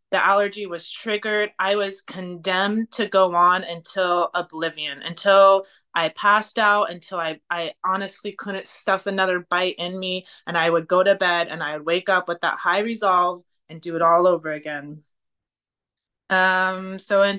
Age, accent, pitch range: 20-39, American, 175-210 Hz